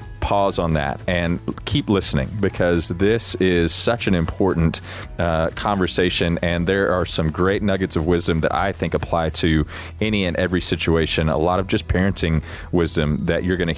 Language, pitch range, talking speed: English, 85-100 Hz, 180 wpm